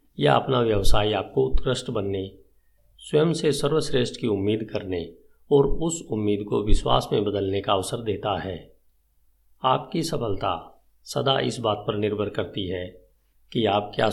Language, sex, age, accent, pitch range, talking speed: Hindi, male, 50-69, native, 90-120 Hz, 150 wpm